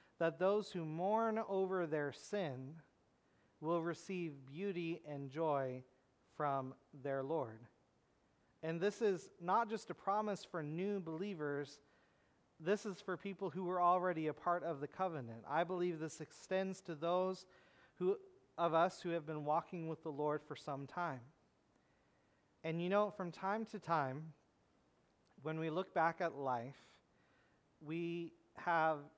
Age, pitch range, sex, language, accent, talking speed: 40-59, 145-185 Hz, male, English, American, 145 wpm